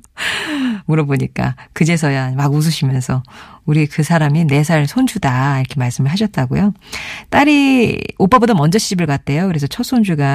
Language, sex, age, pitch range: Korean, female, 40-59, 145-215 Hz